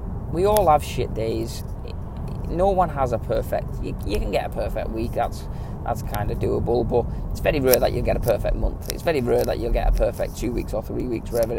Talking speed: 240 wpm